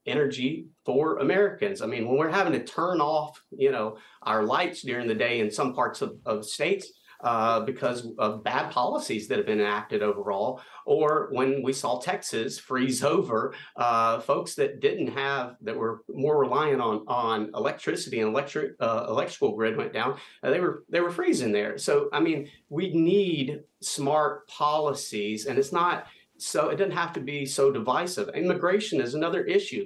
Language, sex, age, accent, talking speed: English, male, 40-59, American, 180 wpm